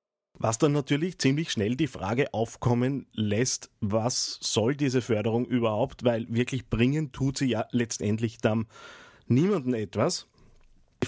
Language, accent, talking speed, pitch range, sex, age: German, Austrian, 135 wpm, 115-145 Hz, male, 30-49